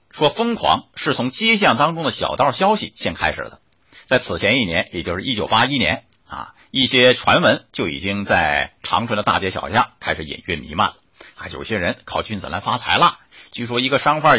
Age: 50-69